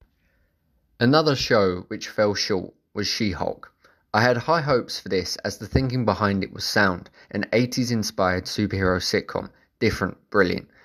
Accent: British